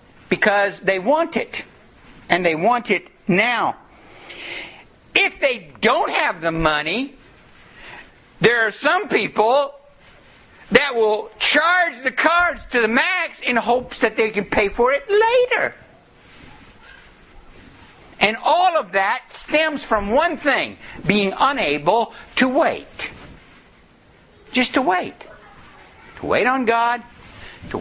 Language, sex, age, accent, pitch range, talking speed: English, male, 60-79, American, 165-260 Hz, 120 wpm